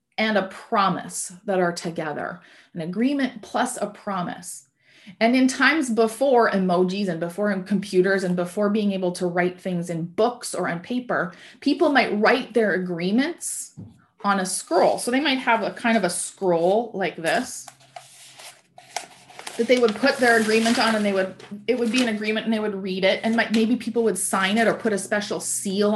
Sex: female